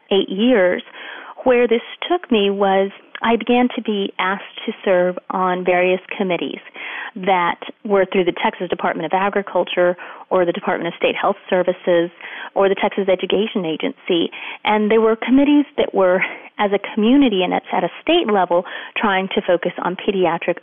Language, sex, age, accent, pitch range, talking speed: English, female, 30-49, American, 180-225 Hz, 165 wpm